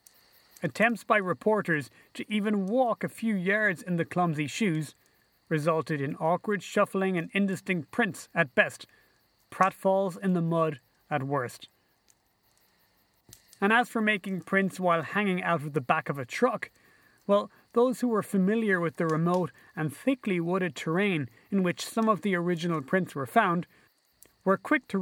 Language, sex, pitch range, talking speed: English, male, 155-205 Hz, 160 wpm